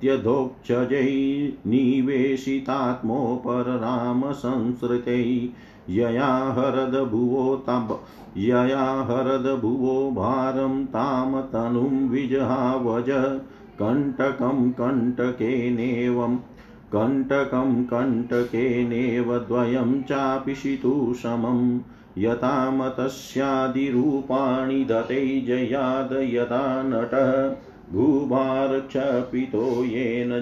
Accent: native